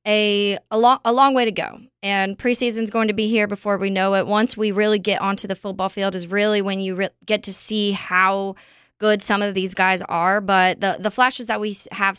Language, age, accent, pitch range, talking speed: English, 20-39, American, 190-215 Hz, 220 wpm